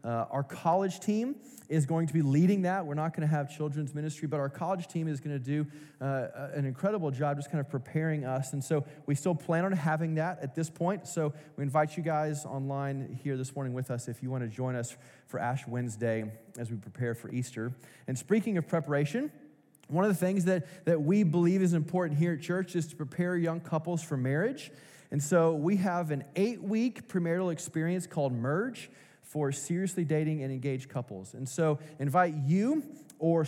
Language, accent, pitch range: English, American, 135-165 Hz